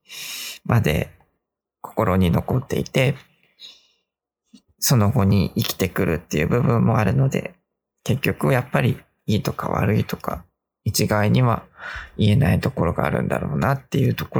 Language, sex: Japanese, male